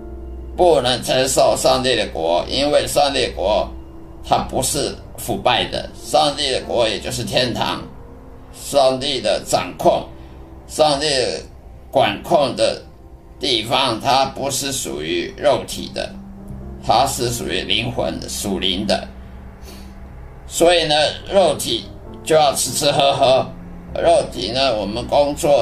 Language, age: Chinese, 50-69